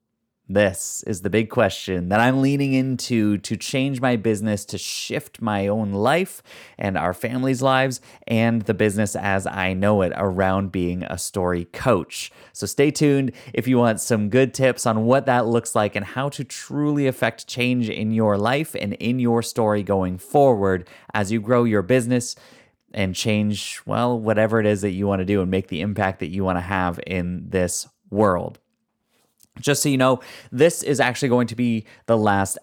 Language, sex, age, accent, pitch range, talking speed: English, male, 20-39, American, 100-125 Hz, 190 wpm